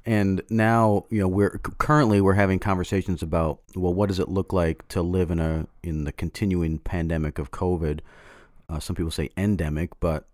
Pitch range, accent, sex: 80-95 Hz, American, male